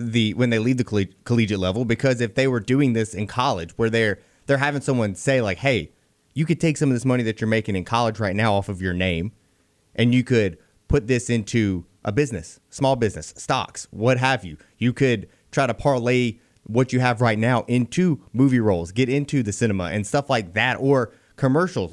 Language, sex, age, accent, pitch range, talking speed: English, male, 30-49, American, 115-140 Hz, 215 wpm